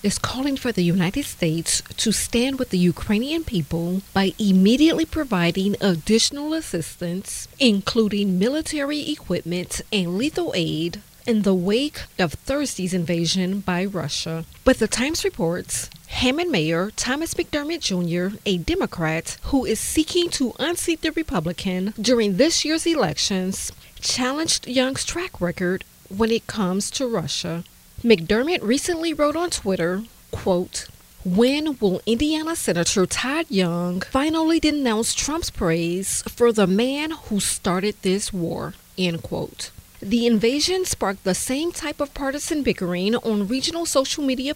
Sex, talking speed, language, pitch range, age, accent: female, 135 wpm, English, 185-285 Hz, 40-59, American